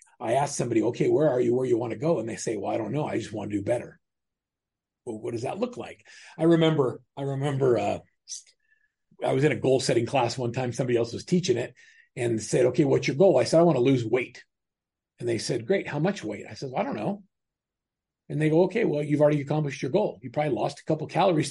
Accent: American